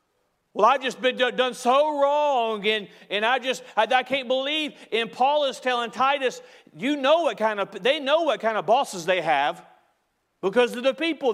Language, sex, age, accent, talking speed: English, male, 40-59, American, 195 wpm